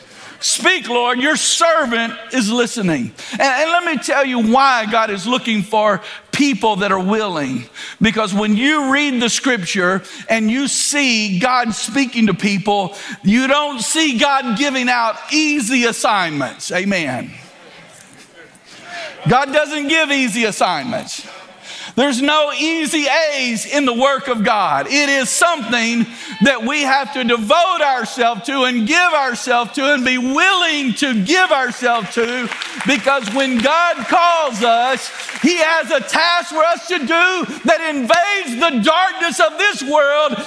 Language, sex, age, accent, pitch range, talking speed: English, male, 50-69, American, 230-290 Hz, 145 wpm